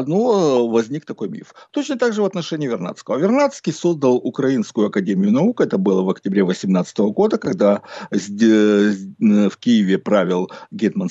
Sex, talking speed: male, 140 wpm